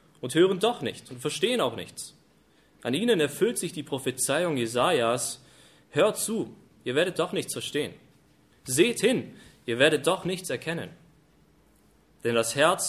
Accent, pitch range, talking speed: German, 120-155 Hz, 150 wpm